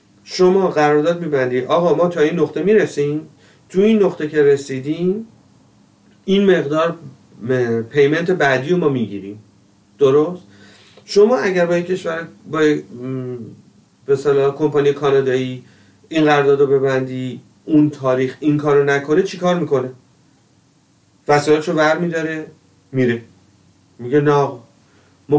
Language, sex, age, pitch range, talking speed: Persian, male, 40-59, 120-160 Hz, 125 wpm